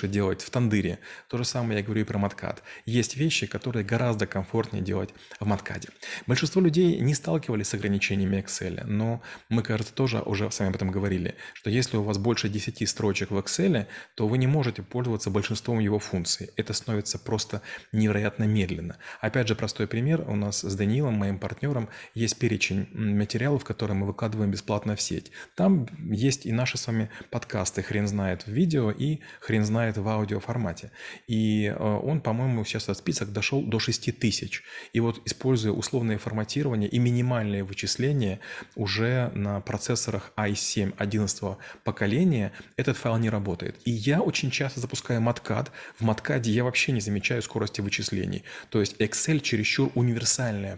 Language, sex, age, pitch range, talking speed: Russian, male, 30-49, 105-120 Hz, 165 wpm